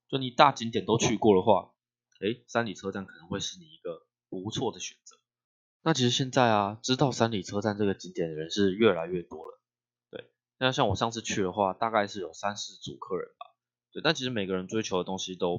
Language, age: Chinese, 20-39